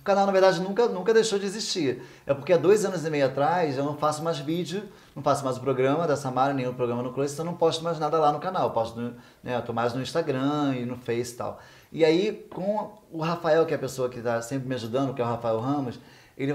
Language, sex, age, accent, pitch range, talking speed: Portuguese, male, 20-39, Brazilian, 135-180 Hz, 275 wpm